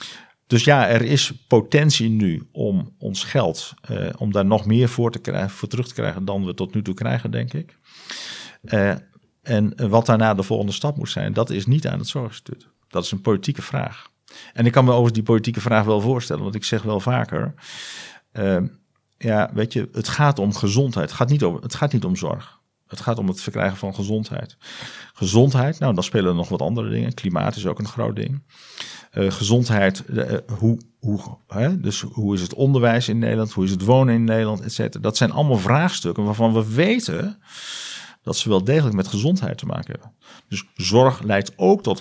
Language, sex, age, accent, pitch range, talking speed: Dutch, male, 50-69, Dutch, 105-135 Hz, 205 wpm